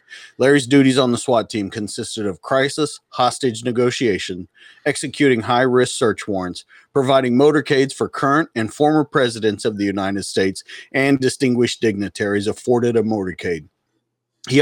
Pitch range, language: 105-135 Hz, English